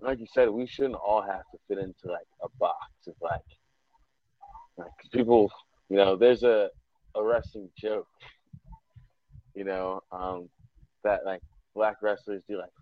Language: English